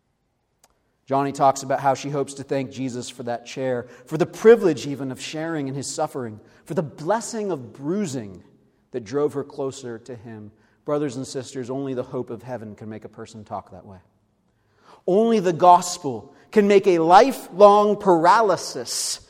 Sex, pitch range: male, 115-180 Hz